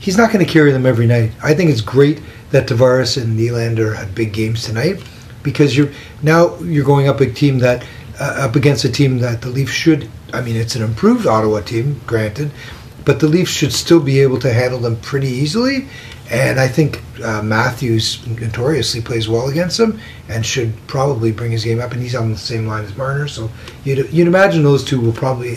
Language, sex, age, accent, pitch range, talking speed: English, male, 40-59, American, 115-140 Hz, 215 wpm